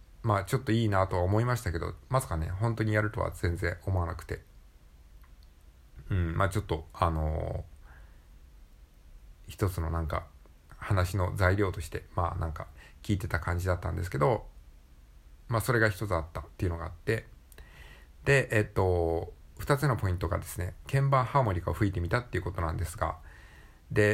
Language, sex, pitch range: Japanese, male, 80-110 Hz